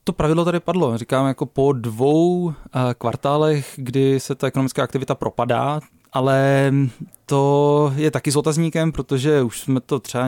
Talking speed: 150 wpm